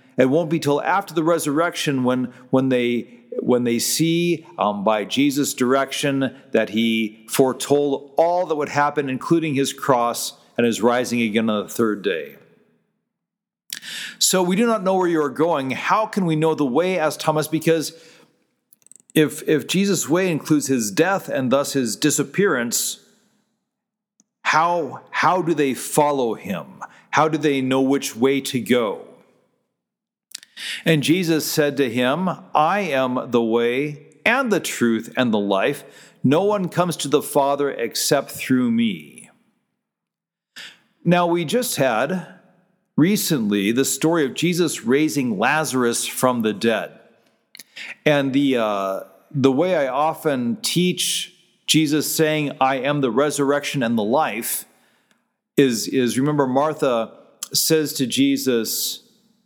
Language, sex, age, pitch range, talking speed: English, male, 40-59, 130-175 Hz, 140 wpm